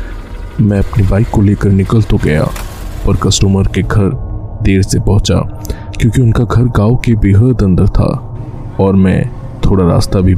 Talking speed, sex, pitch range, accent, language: 160 wpm, male, 95-115 Hz, native, Hindi